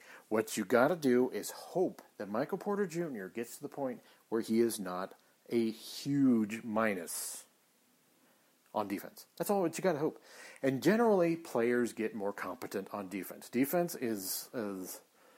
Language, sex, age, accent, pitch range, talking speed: English, male, 40-59, American, 105-130 Hz, 165 wpm